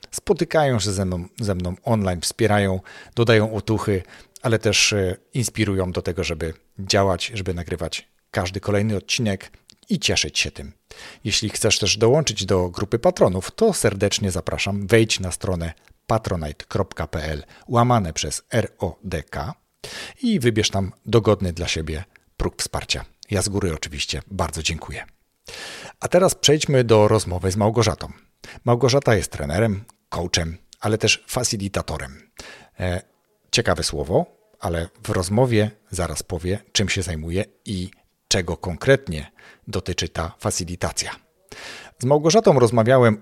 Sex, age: male, 40-59